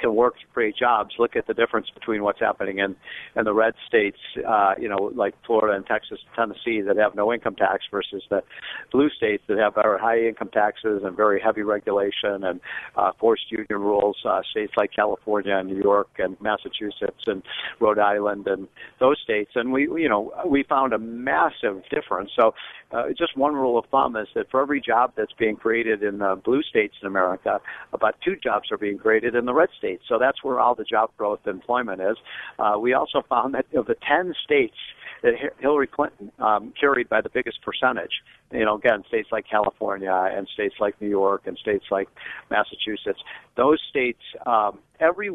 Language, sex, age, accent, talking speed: English, male, 50-69, American, 200 wpm